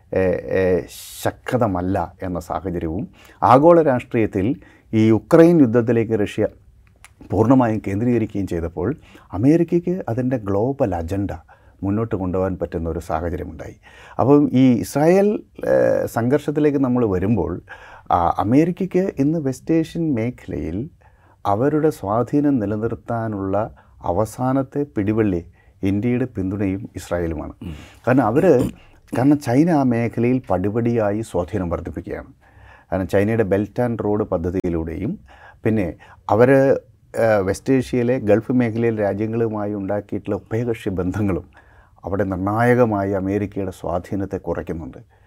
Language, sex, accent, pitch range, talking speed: Malayalam, male, native, 95-125 Hz, 90 wpm